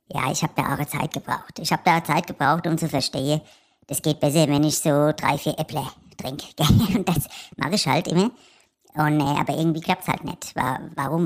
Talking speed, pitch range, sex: 220 wpm, 145-180 Hz, male